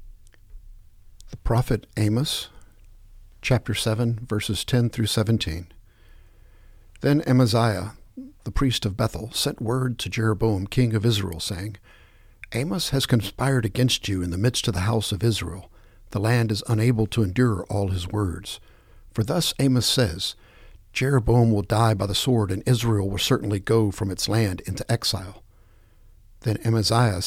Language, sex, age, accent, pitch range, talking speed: English, male, 60-79, American, 100-120 Hz, 145 wpm